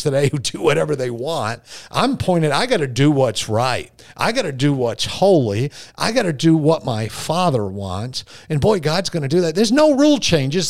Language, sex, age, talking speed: English, male, 50-69, 220 wpm